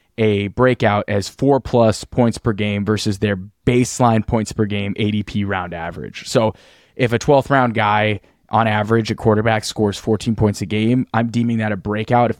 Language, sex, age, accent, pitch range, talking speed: English, male, 20-39, American, 105-125 Hz, 185 wpm